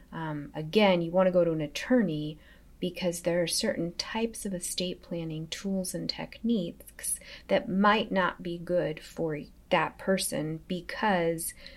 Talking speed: 150 wpm